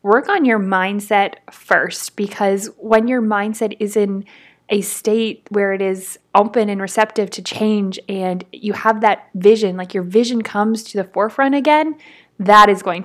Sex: female